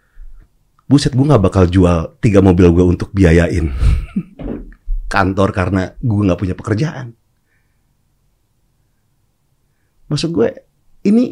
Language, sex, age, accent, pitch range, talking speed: Indonesian, male, 40-59, native, 115-165 Hz, 100 wpm